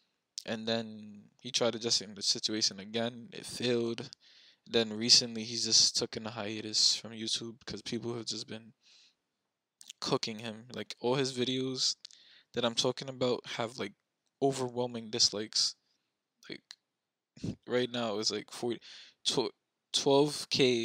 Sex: male